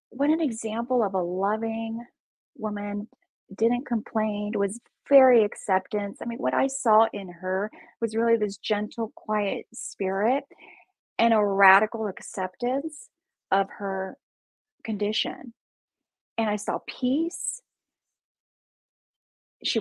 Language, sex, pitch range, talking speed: English, female, 210-275 Hz, 110 wpm